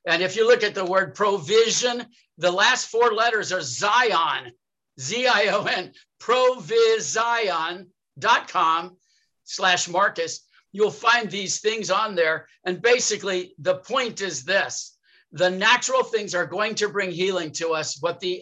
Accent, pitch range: American, 180-235 Hz